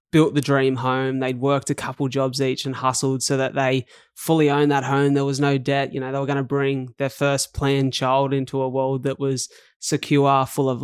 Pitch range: 130-140 Hz